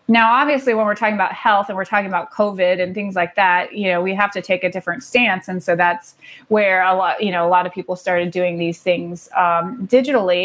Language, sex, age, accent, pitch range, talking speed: English, female, 30-49, American, 190-235 Hz, 245 wpm